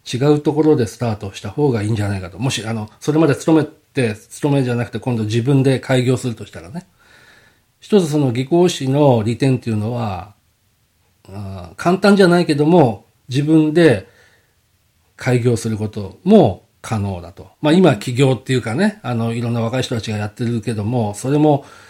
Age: 40-59